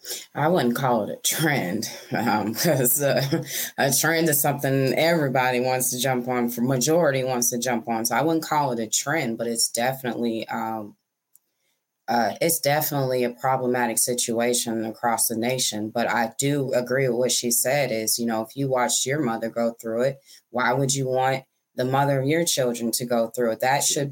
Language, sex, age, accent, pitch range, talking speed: English, female, 20-39, American, 125-155 Hz, 190 wpm